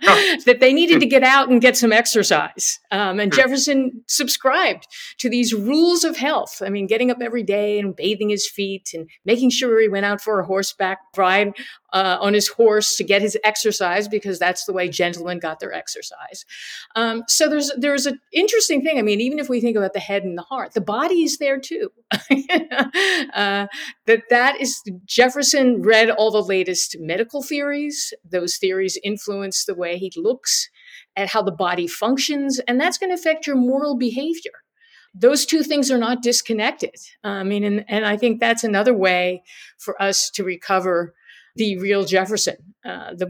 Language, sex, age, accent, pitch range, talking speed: English, female, 50-69, American, 195-275 Hz, 185 wpm